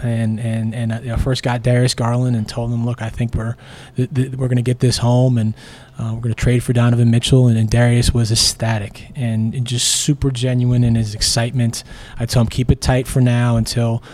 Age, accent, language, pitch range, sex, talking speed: 20-39, American, English, 120-130 Hz, male, 225 wpm